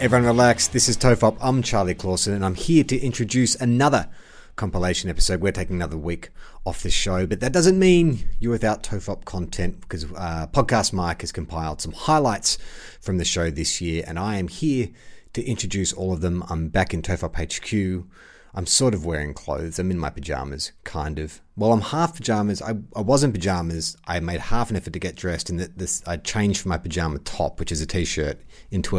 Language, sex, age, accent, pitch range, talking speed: English, male, 30-49, Australian, 85-115 Hz, 205 wpm